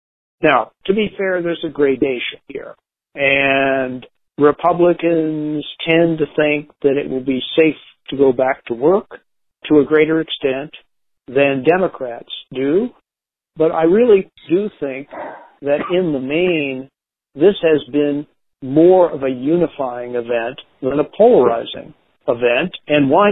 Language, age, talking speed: English, 50-69, 135 wpm